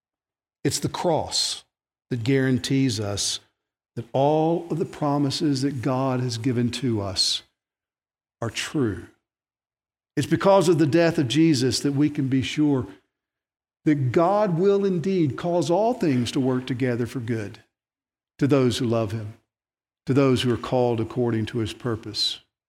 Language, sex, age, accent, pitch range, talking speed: English, male, 60-79, American, 115-145 Hz, 150 wpm